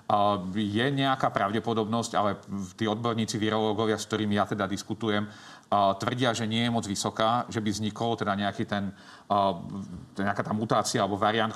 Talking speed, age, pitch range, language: 150 wpm, 40-59, 100-115 Hz, Slovak